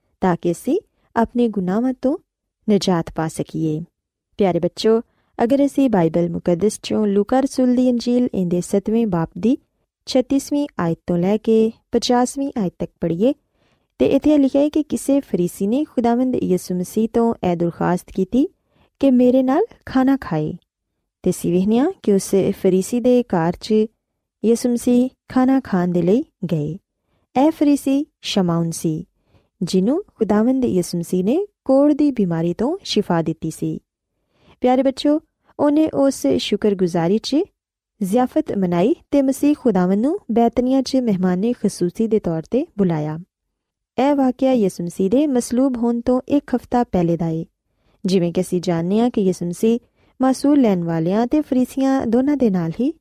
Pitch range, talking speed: 180-265 Hz, 140 wpm